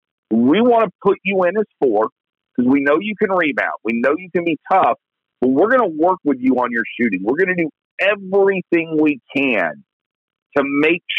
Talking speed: 210 wpm